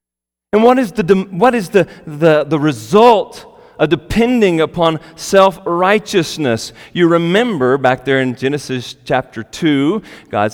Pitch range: 115-165 Hz